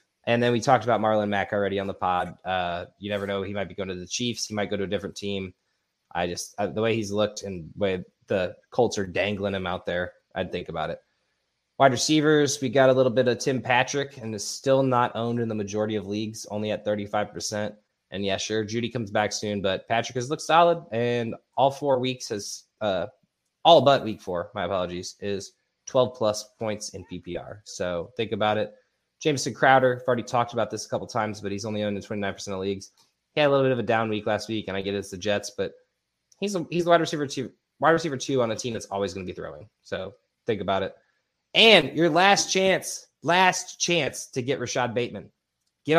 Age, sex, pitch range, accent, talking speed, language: 20-39, male, 100-130 Hz, American, 230 wpm, English